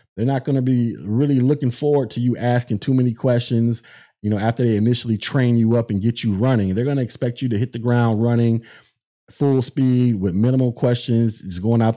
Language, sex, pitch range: English, male, 110-130 Hz